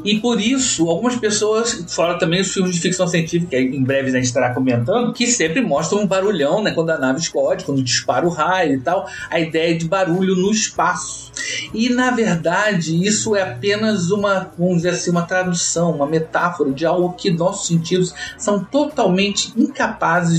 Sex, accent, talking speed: male, Brazilian, 180 wpm